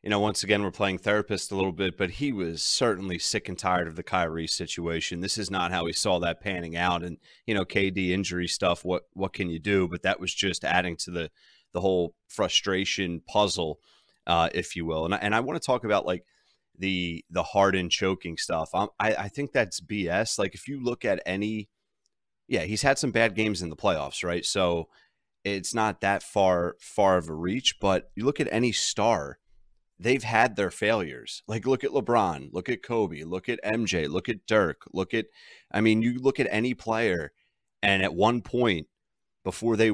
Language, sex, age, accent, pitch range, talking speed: English, male, 30-49, American, 90-110 Hz, 210 wpm